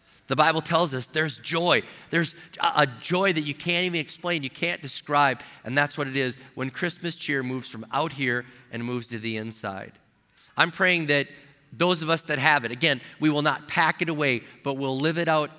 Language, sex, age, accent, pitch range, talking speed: English, male, 30-49, American, 125-155 Hz, 210 wpm